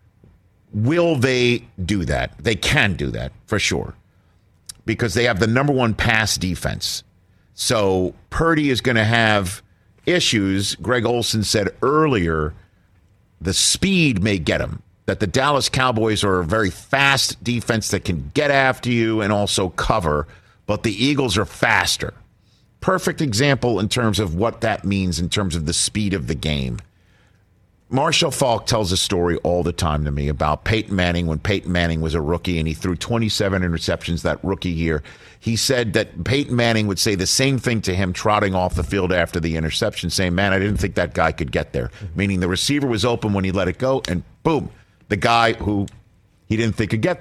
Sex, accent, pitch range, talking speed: male, American, 90-120 Hz, 190 wpm